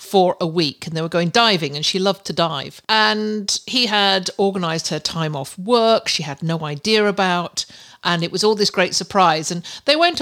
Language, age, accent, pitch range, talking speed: English, 50-69, British, 170-215 Hz, 210 wpm